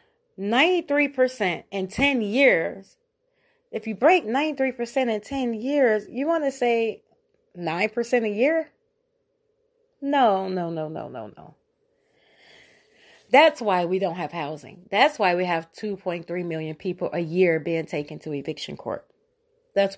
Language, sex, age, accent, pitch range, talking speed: English, female, 30-49, American, 180-275 Hz, 130 wpm